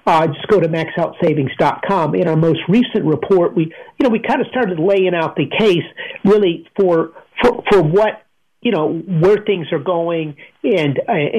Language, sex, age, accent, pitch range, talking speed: English, male, 50-69, American, 160-205 Hz, 175 wpm